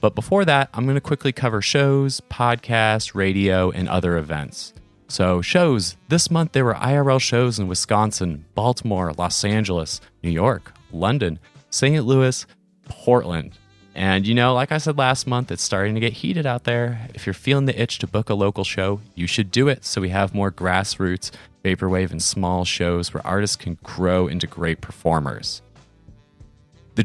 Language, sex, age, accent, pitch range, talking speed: English, male, 30-49, American, 90-125 Hz, 175 wpm